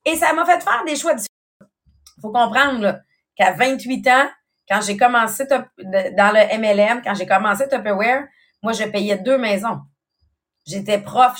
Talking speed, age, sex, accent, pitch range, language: 170 wpm, 30-49, female, Canadian, 200-270 Hz, English